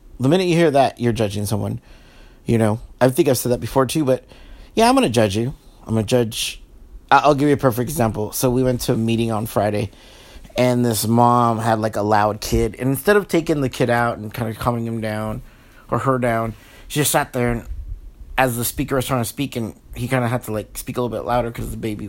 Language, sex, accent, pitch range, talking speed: English, male, American, 110-135 Hz, 255 wpm